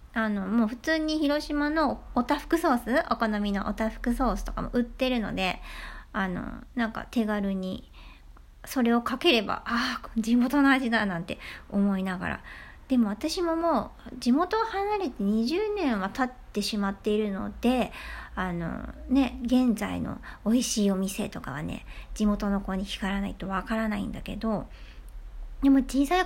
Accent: native